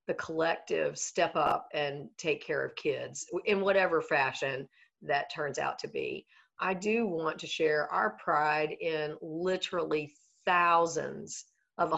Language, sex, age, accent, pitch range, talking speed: English, female, 50-69, American, 160-190 Hz, 140 wpm